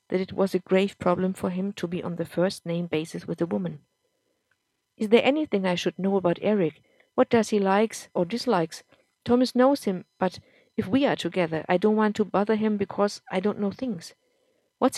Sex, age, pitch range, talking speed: female, 50-69, 185-230 Hz, 205 wpm